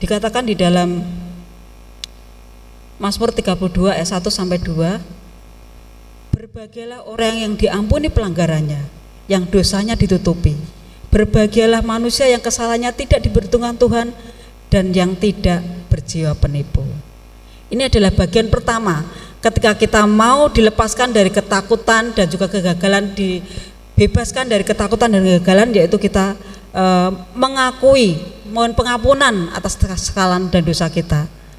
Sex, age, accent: female, 30-49, native